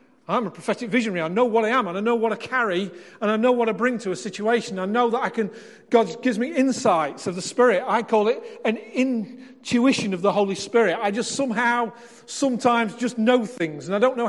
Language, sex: English, male